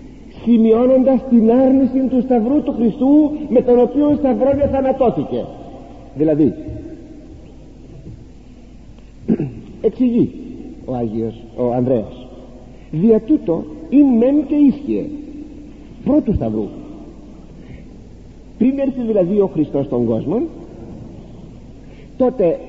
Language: Greek